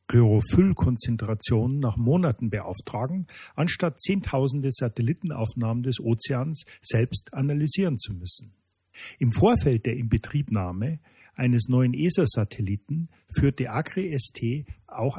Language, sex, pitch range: German, male, 110-145 Hz